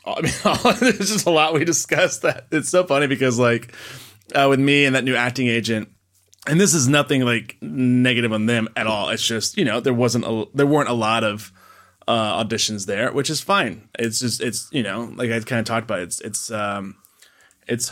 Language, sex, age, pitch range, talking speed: English, male, 20-39, 110-130 Hz, 220 wpm